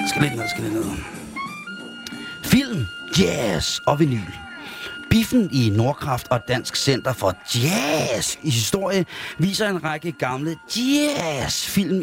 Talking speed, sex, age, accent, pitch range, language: 135 wpm, male, 30-49, native, 120-160 Hz, Danish